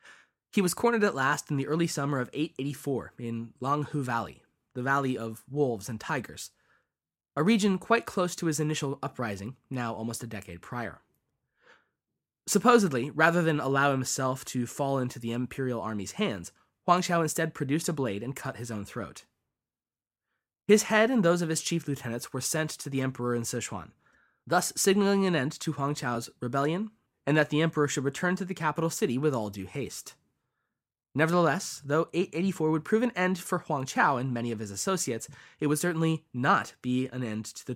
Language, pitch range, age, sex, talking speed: English, 120-165 Hz, 20-39, male, 185 wpm